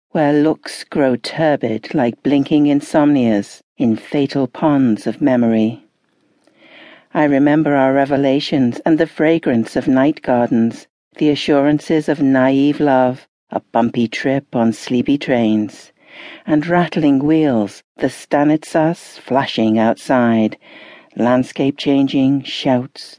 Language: English